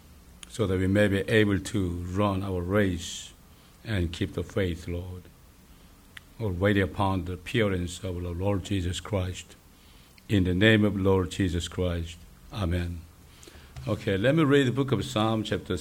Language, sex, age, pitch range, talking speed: English, male, 60-79, 90-125 Hz, 160 wpm